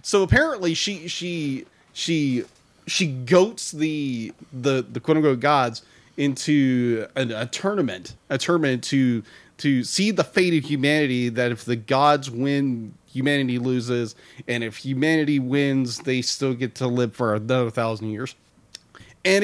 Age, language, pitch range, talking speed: 30-49, English, 140-225 Hz, 145 wpm